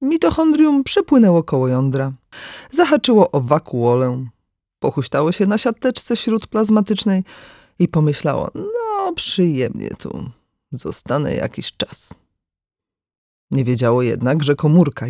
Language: Polish